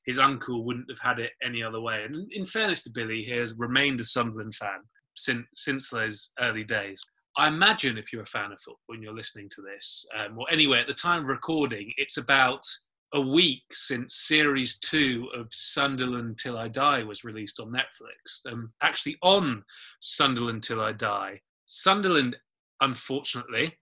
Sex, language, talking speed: male, English, 180 wpm